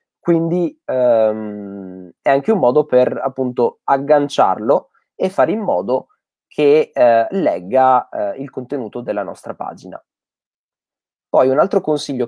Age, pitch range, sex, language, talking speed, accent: 20-39, 120-150 Hz, male, Italian, 125 wpm, native